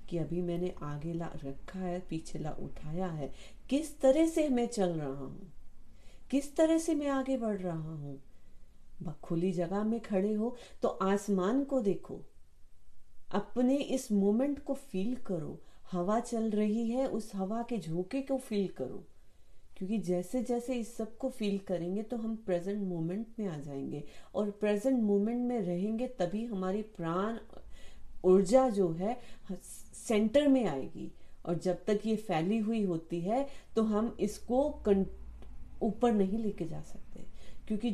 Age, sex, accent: 30-49, female, native